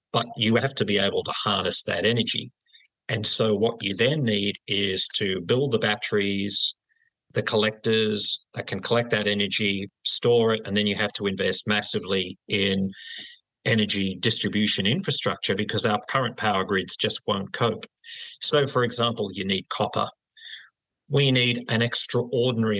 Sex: male